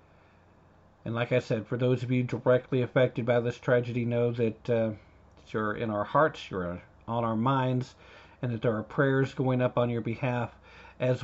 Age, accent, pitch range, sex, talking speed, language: 50-69, American, 110-145 Hz, male, 185 wpm, English